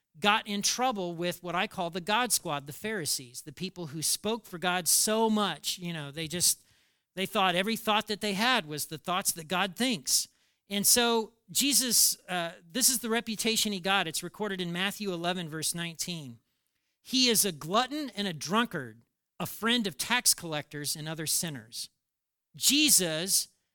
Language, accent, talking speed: English, American, 175 wpm